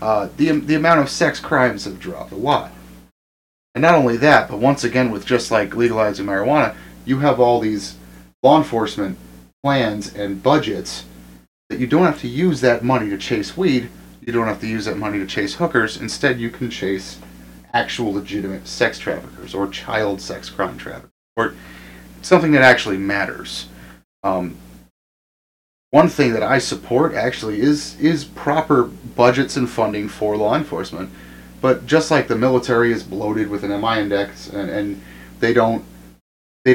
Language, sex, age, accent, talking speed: English, male, 30-49, American, 170 wpm